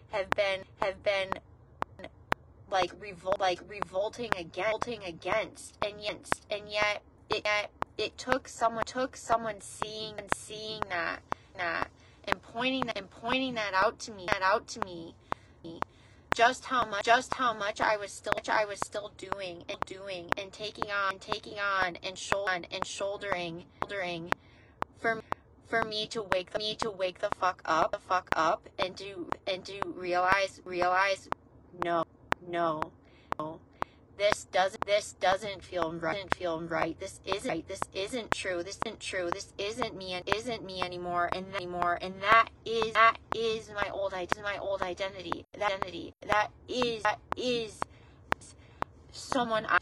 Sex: female